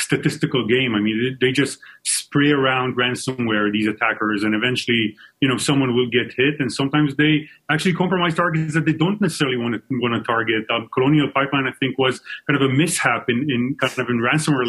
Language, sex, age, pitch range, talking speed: English, male, 30-49, 125-150 Hz, 205 wpm